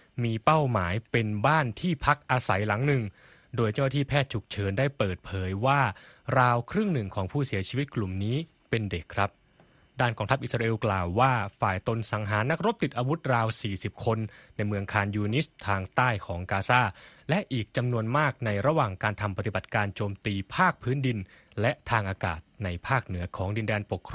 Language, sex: Thai, male